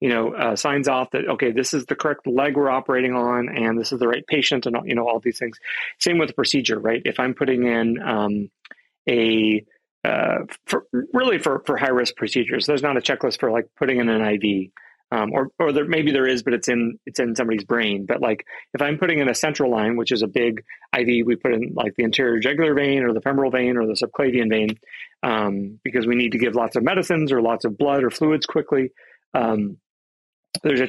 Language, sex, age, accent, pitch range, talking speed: English, male, 30-49, American, 115-145 Hz, 230 wpm